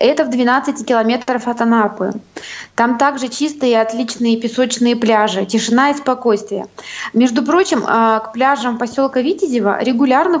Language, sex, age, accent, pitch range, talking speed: Russian, female, 20-39, native, 230-300 Hz, 135 wpm